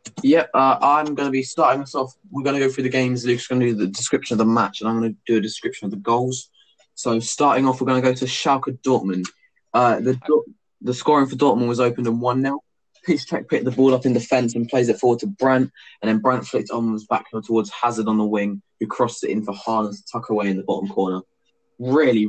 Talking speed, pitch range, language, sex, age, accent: 255 wpm, 110-130 Hz, English, male, 20-39, British